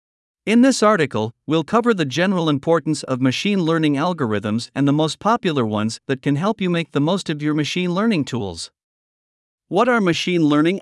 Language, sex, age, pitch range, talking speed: Vietnamese, male, 50-69, 120-175 Hz, 185 wpm